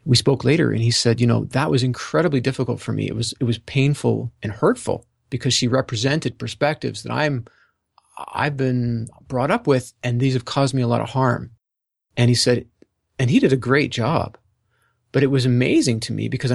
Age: 30-49